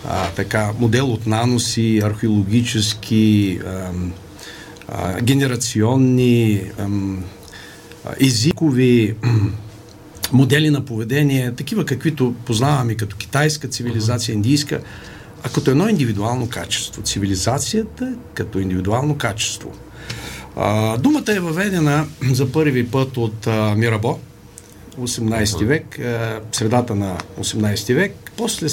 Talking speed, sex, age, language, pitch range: 100 wpm, male, 50-69, Bulgarian, 105-140 Hz